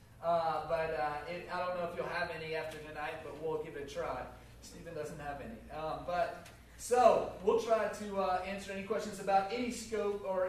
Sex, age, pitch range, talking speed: male, 30-49, 185-225 Hz, 210 wpm